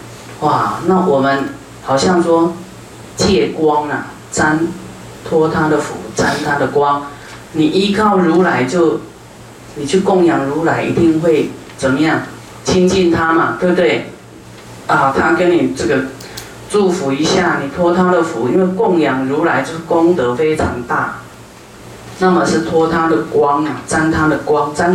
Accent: native